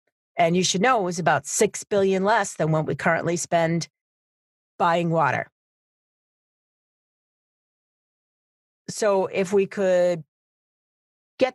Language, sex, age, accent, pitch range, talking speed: English, female, 40-59, American, 160-210 Hz, 115 wpm